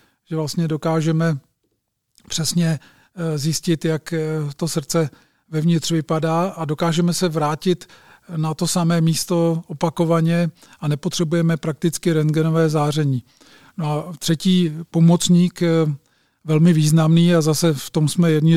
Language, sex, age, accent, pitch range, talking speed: Czech, male, 40-59, native, 155-170 Hz, 115 wpm